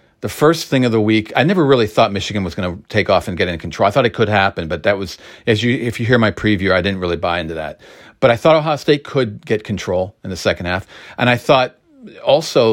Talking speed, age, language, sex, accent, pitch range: 270 wpm, 40-59, English, male, American, 95-125 Hz